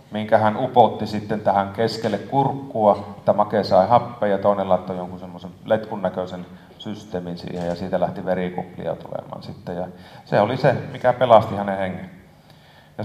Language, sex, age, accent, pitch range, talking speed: Finnish, male, 30-49, native, 90-120 Hz, 155 wpm